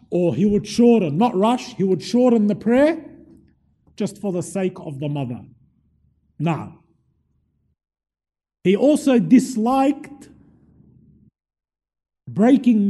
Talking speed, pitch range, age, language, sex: 105 wpm, 200-270 Hz, 50-69, English, male